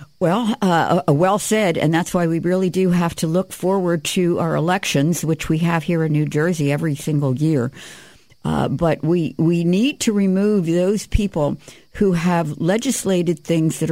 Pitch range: 150-180 Hz